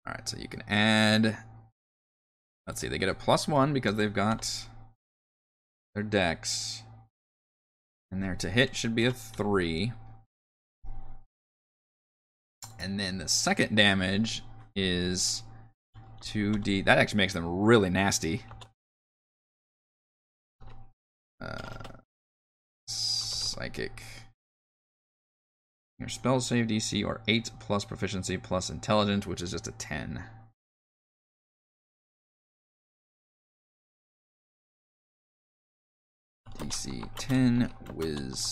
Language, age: English, 20-39